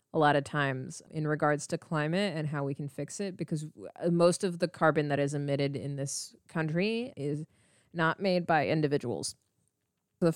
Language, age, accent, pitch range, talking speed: English, 20-39, American, 145-170 Hz, 180 wpm